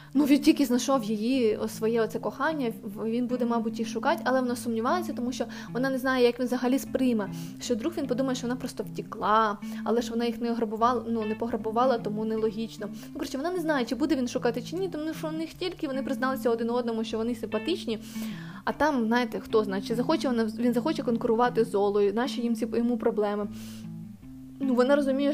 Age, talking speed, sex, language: 20-39, 200 wpm, female, Ukrainian